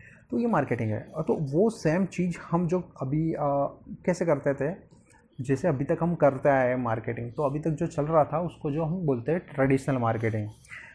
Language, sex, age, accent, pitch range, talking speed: Hindi, male, 20-39, native, 125-155 Hz, 205 wpm